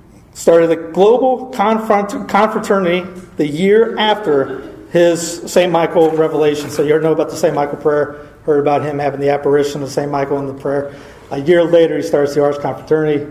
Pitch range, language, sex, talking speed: 145-175 Hz, English, male, 175 wpm